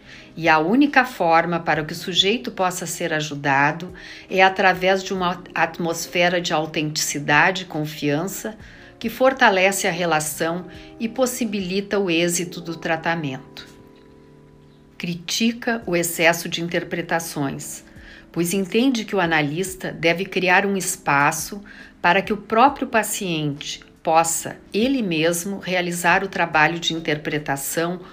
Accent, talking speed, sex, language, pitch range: Brazilian, 120 wpm, female, Portuguese, 165-205 Hz